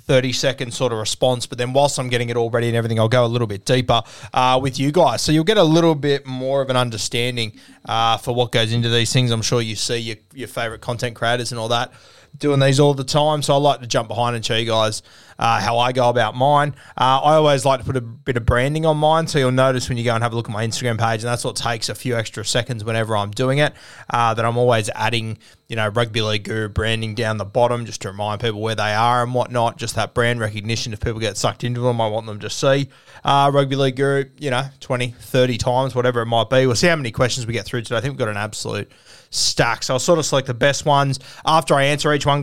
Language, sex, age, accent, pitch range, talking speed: English, male, 20-39, Australian, 115-135 Hz, 270 wpm